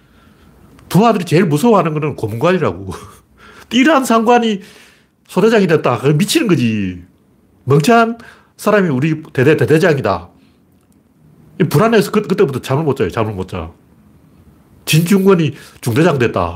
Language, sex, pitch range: Korean, male, 95-155 Hz